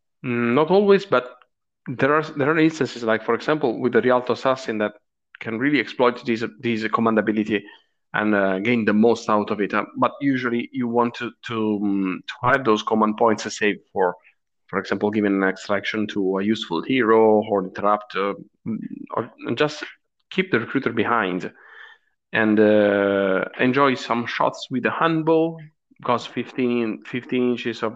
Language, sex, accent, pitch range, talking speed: English, male, Italian, 105-145 Hz, 160 wpm